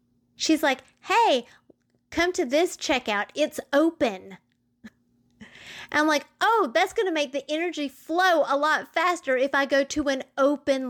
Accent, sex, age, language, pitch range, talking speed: American, female, 30-49, English, 215-290 Hz, 150 wpm